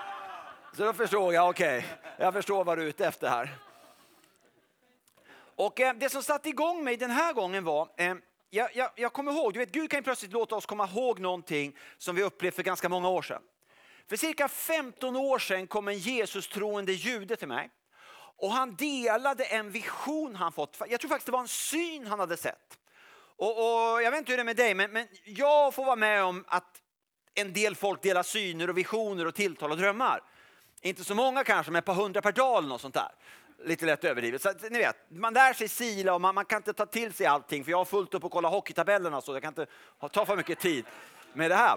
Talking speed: 220 wpm